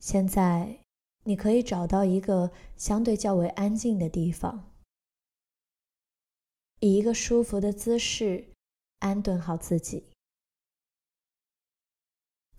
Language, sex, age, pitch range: Chinese, female, 20-39, 180-210 Hz